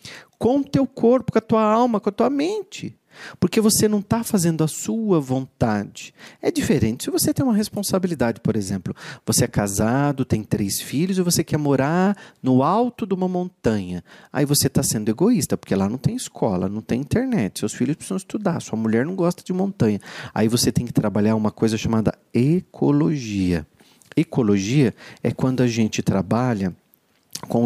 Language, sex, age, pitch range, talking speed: Portuguese, male, 40-59, 115-175 Hz, 180 wpm